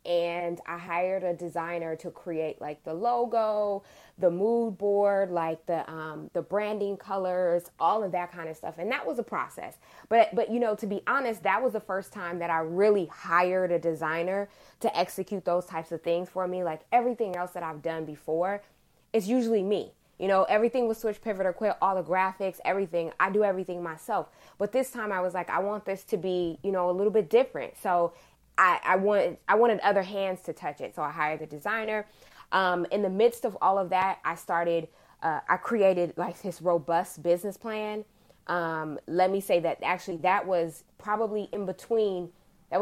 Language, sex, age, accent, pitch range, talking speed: English, female, 20-39, American, 170-205 Hz, 205 wpm